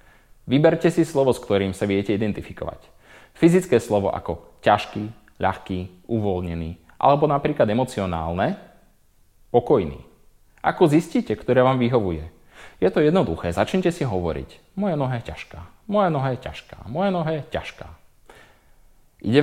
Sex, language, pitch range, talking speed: male, Slovak, 95-165 Hz, 125 wpm